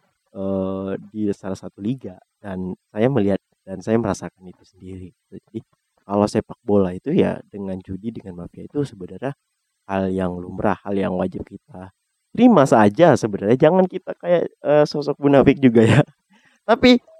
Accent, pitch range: native, 100-160 Hz